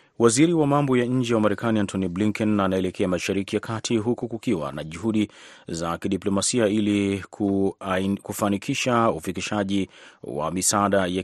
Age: 30-49